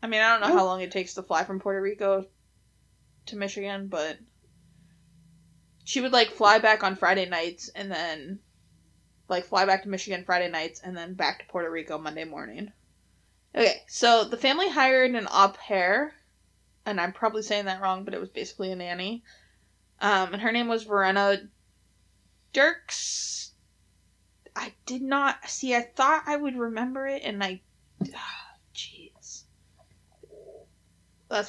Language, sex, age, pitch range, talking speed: English, female, 20-39, 180-240 Hz, 155 wpm